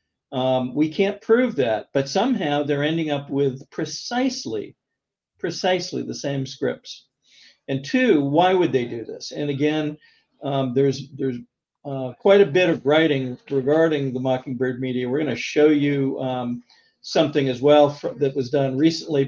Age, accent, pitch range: 50-69, American, 135-165 Hz